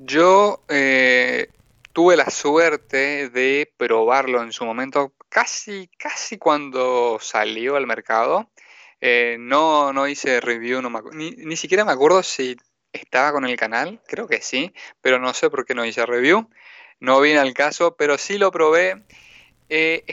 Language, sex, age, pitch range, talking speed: Spanish, male, 20-39, 125-155 Hz, 150 wpm